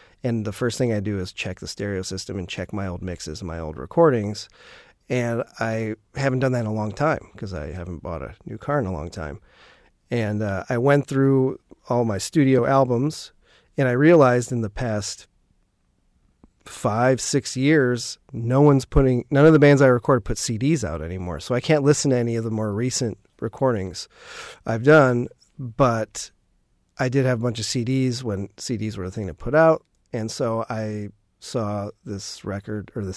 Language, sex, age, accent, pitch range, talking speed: English, male, 40-59, American, 95-125 Hz, 195 wpm